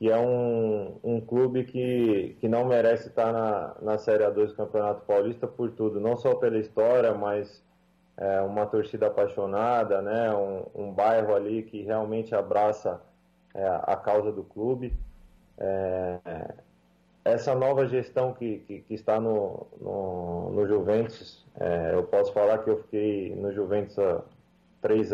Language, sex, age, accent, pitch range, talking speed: Portuguese, male, 20-39, Brazilian, 105-125 Hz, 145 wpm